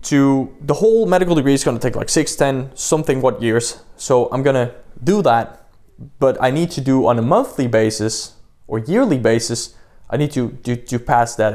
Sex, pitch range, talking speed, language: male, 110-140 Hz, 210 wpm, English